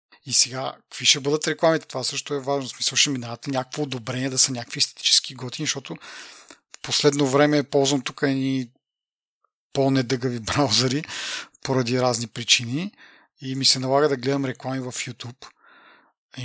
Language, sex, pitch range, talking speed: Bulgarian, male, 125-150 Hz, 150 wpm